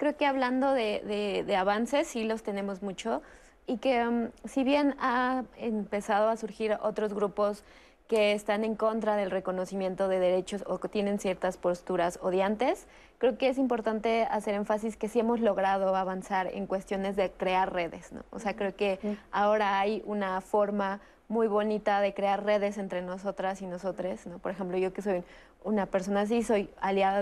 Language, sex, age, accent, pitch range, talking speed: Spanish, female, 20-39, Mexican, 190-220 Hz, 180 wpm